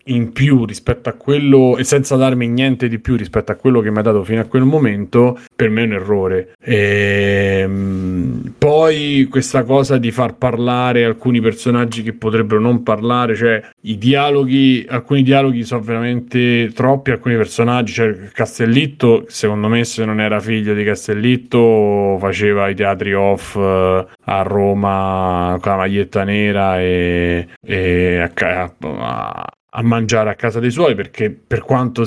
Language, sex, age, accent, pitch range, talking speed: Italian, male, 30-49, native, 105-125 Hz, 155 wpm